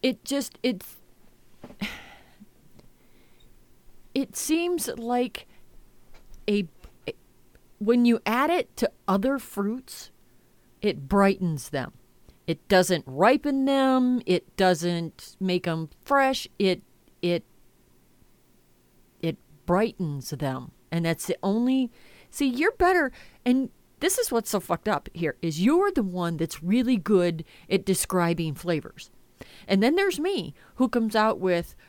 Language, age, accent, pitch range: English, 40-59, American, 175-250 Hz